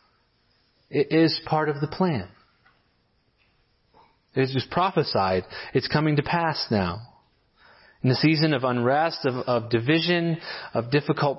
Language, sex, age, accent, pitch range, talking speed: English, male, 30-49, American, 115-155 Hz, 125 wpm